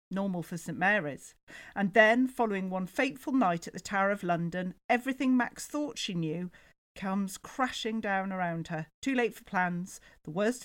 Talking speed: 175 wpm